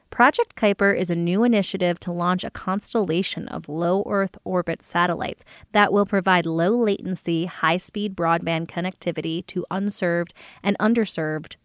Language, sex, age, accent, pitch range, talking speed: English, female, 20-39, American, 170-195 Hz, 130 wpm